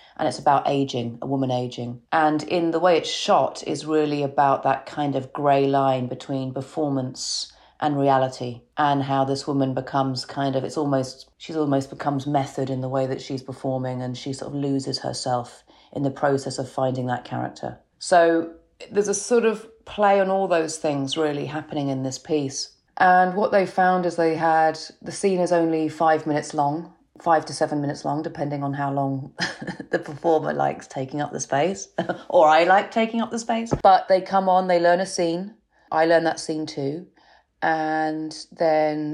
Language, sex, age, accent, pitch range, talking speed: English, female, 30-49, British, 135-170 Hz, 190 wpm